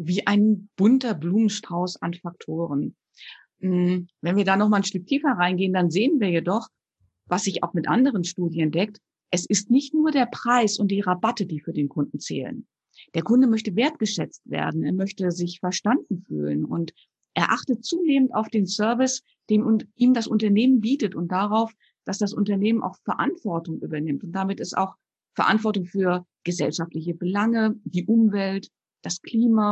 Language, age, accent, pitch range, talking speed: German, 50-69, German, 180-235 Hz, 165 wpm